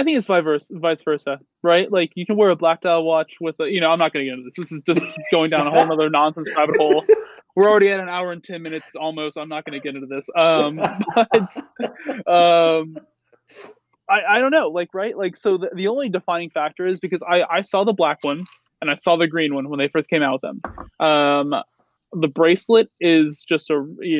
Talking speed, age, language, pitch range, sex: 235 wpm, 20-39, English, 150-180 Hz, male